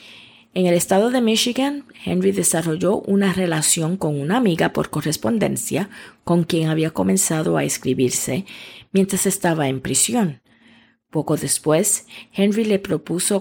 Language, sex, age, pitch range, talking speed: English, female, 30-49, 150-200 Hz, 130 wpm